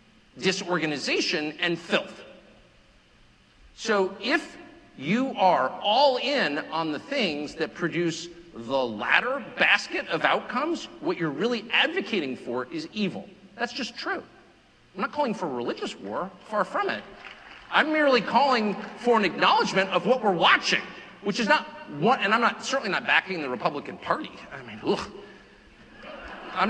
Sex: male